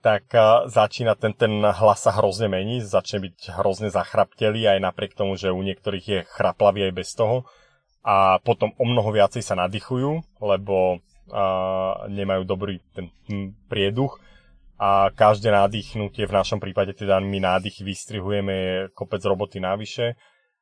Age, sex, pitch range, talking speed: 30-49, male, 95-105 Hz, 150 wpm